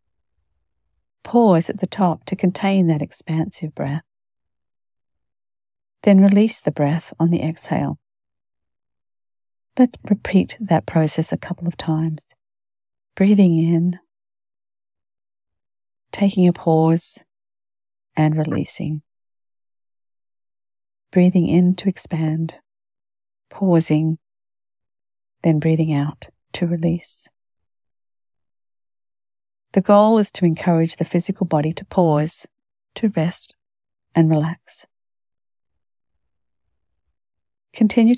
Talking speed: 90 wpm